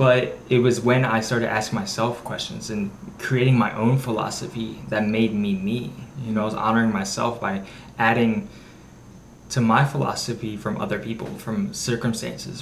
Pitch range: 110-125 Hz